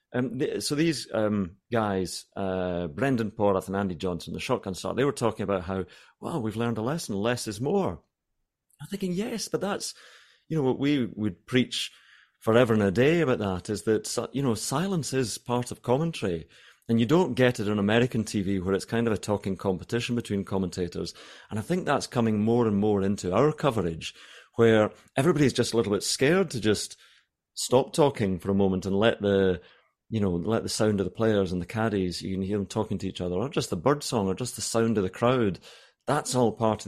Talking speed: 215 wpm